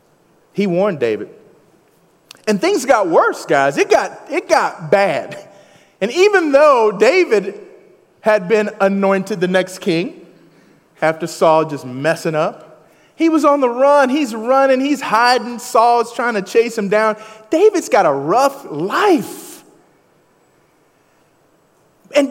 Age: 30-49